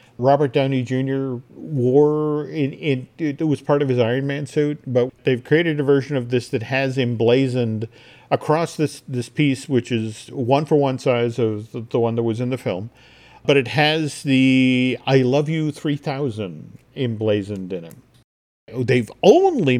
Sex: male